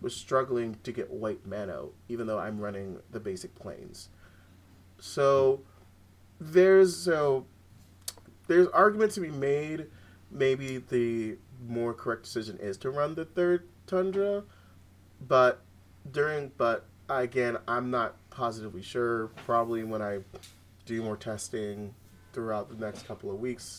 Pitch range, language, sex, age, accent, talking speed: 95-125 Hz, English, male, 30-49, American, 135 wpm